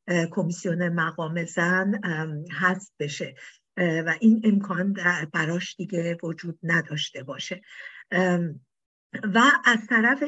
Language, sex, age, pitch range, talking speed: English, female, 50-69, 175-210 Hz, 95 wpm